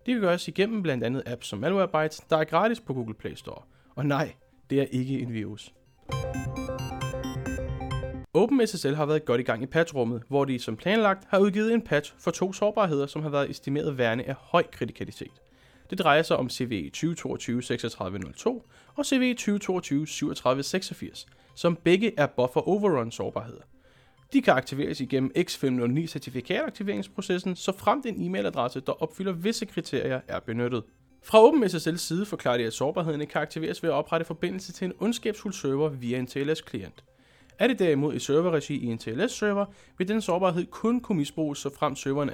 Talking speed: 165 wpm